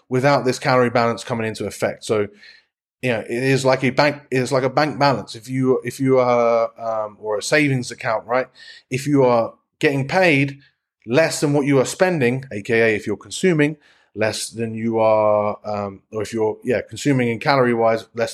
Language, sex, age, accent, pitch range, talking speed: English, male, 30-49, British, 120-145 Hz, 195 wpm